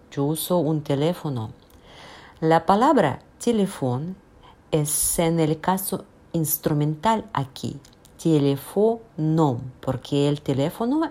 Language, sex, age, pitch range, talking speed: Spanish, female, 50-69, 145-195 Hz, 90 wpm